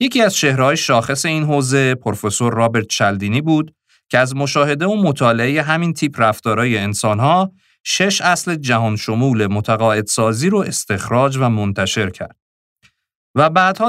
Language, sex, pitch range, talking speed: Persian, male, 105-155 Hz, 135 wpm